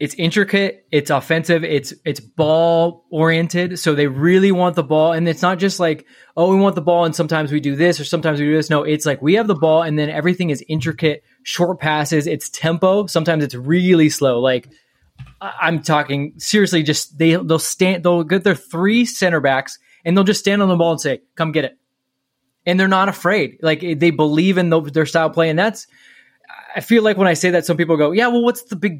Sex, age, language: male, 20-39, English